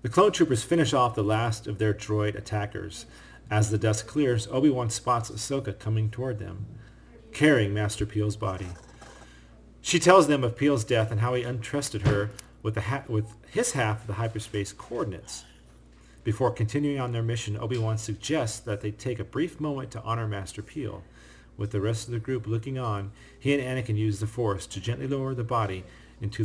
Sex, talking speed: male, 190 wpm